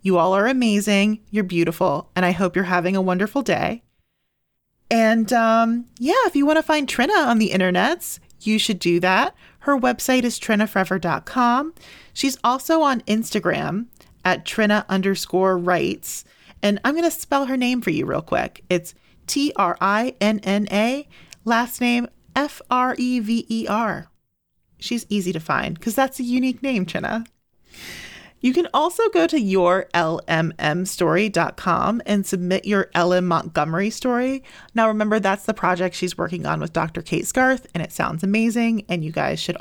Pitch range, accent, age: 185-255 Hz, American, 30-49